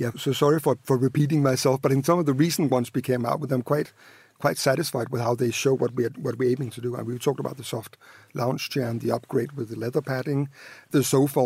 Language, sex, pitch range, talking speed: English, male, 130-150 Hz, 260 wpm